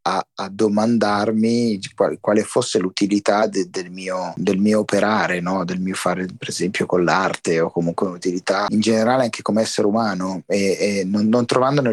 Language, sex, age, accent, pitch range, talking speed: Italian, male, 30-49, native, 95-115 Hz, 180 wpm